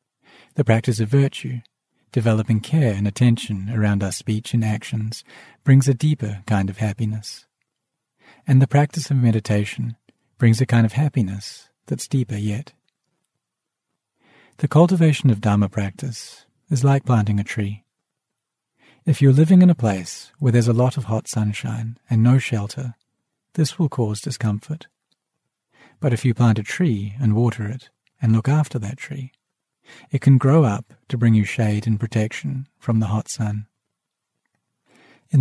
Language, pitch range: English, 110-140 Hz